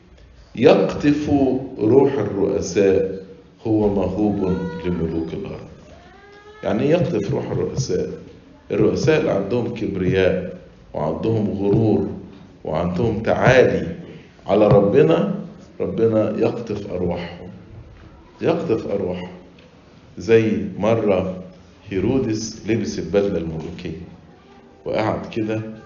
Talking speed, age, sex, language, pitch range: 80 wpm, 50-69, male, English, 90-110 Hz